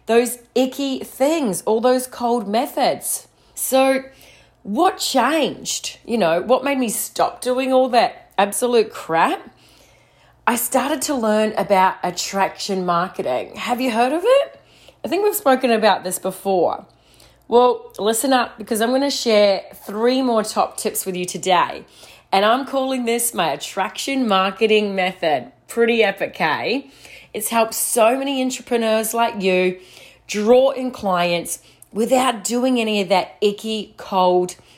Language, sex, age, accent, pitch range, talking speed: English, female, 30-49, Australian, 195-260 Hz, 145 wpm